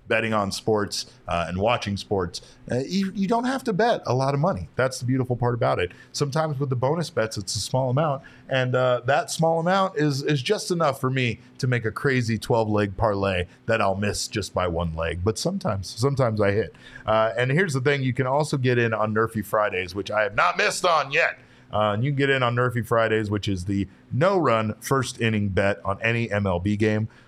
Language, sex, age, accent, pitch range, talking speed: English, male, 40-59, American, 105-130 Hz, 230 wpm